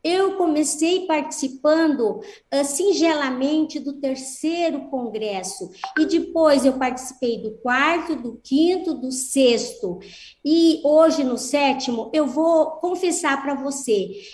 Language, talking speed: Portuguese, 110 wpm